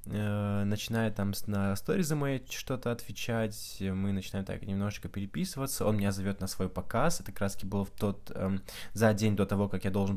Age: 20-39